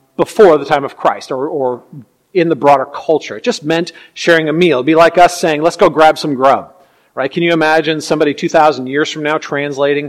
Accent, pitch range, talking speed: American, 145-200 Hz, 220 wpm